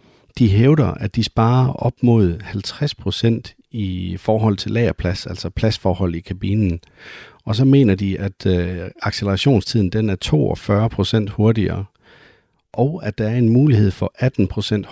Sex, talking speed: male, 135 wpm